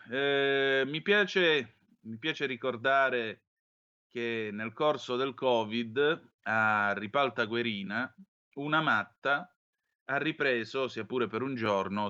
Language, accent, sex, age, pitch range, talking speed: Italian, native, male, 30-49, 105-135 Hz, 110 wpm